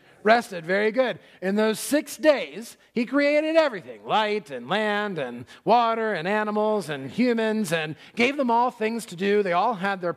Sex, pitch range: male, 165-220 Hz